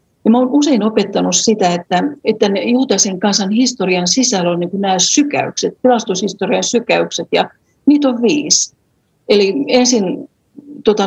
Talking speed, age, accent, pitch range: 125 wpm, 50-69, native, 185-240 Hz